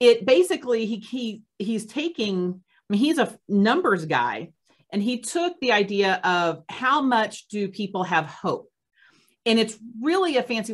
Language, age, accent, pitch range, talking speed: English, 40-59, American, 165-215 Hz, 160 wpm